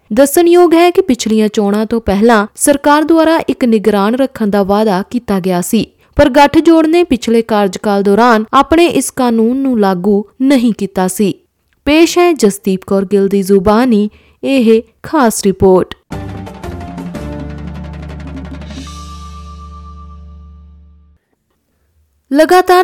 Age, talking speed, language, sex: 20-39, 100 wpm, Punjabi, female